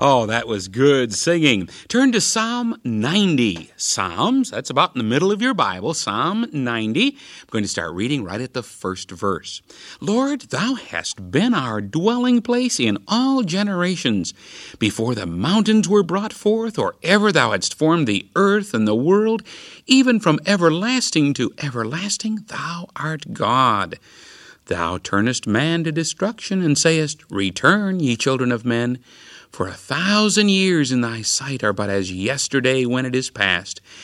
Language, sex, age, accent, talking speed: English, male, 50-69, American, 160 wpm